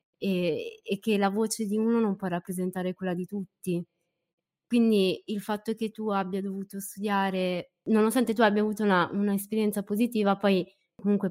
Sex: female